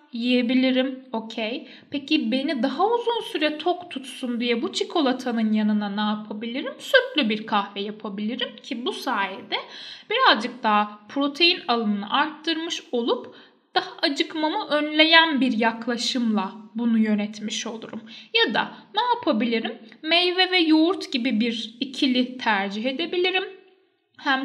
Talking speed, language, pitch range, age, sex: 120 wpm, Turkish, 230-310 Hz, 10-29, female